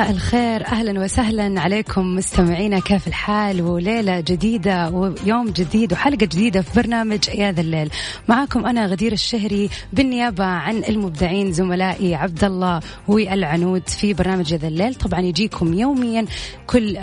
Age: 30-49